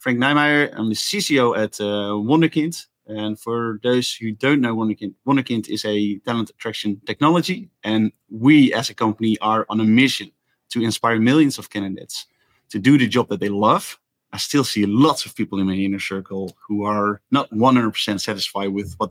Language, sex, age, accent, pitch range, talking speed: English, male, 30-49, Dutch, 105-135 Hz, 180 wpm